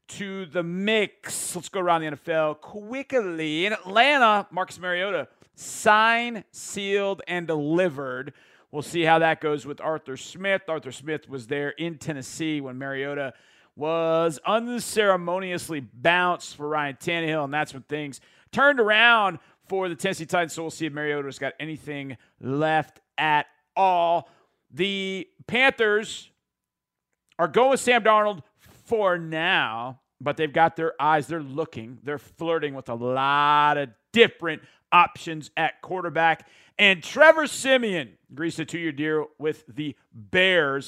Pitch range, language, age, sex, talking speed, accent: 150-195 Hz, English, 40-59, male, 140 wpm, American